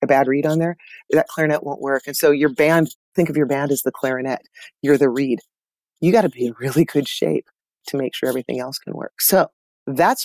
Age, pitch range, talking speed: 30-49, 135-170 Hz, 235 wpm